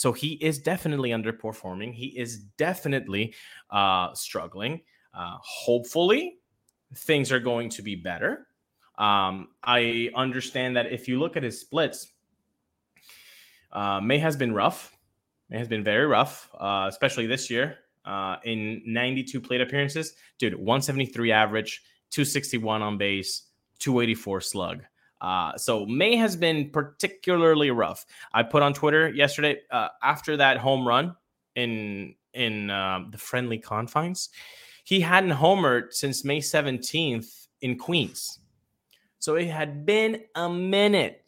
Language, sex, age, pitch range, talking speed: English, male, 20-39, 115-155 Hz, 135 wpm